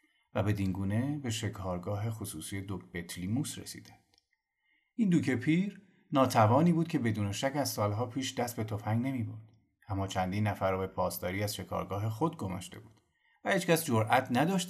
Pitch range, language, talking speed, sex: 100-140 Hz, Persian, 155 wpm, male